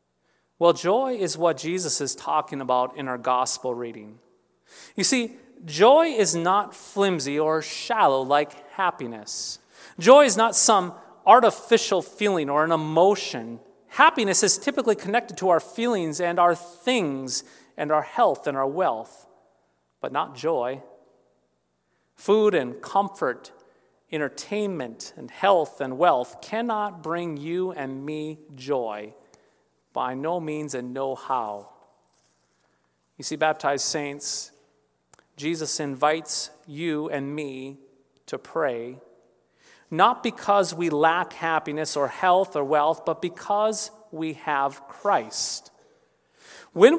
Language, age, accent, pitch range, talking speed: English, 30-49, American, 135-200 Hz, 125 wpm